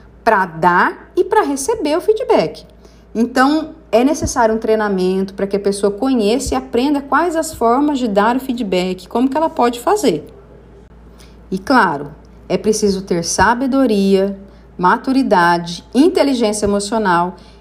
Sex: female